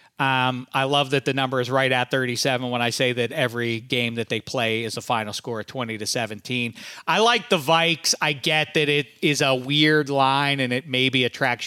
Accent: American